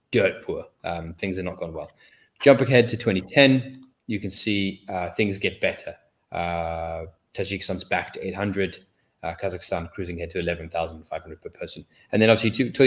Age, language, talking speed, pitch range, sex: 20-39, English, 175 wpm, 95-120 Hz, male